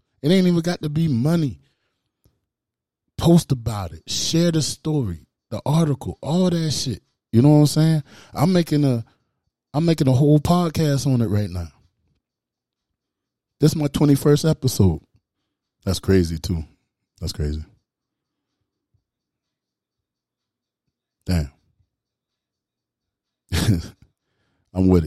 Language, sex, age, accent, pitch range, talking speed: English, male, 20-39, American, 95-135 Hz, 110 wpm